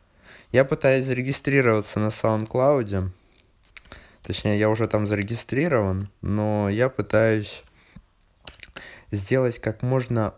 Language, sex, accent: Russian, male, native